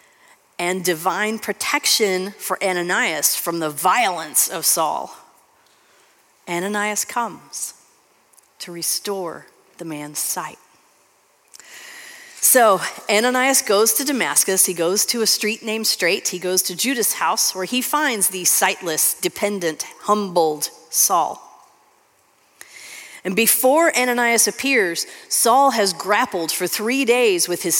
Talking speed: 115 wpm